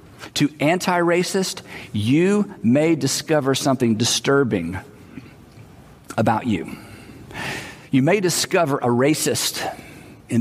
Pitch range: 115-160 Hz